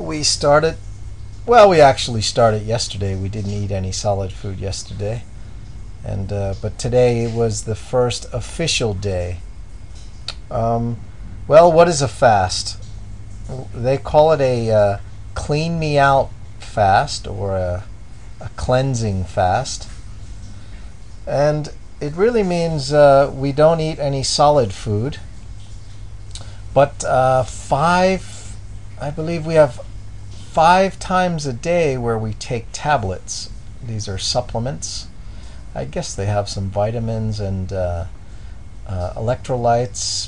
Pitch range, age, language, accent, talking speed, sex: 100-130 Hz, 40-59, English, American, 120 wpm, male